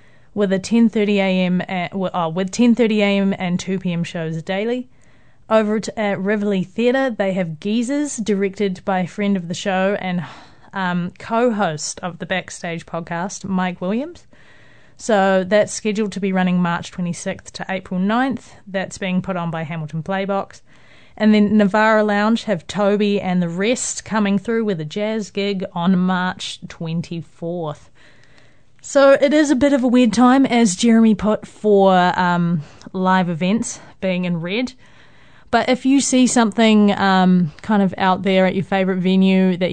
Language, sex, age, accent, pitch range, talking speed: English, female, 30-49, Australian, 175-215 Hz, 155 wpm